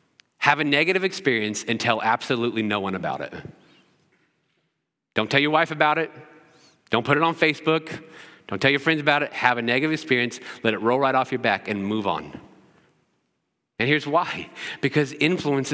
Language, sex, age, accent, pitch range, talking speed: English, male, 40-59, American, 130-155 Hz, 180 wpm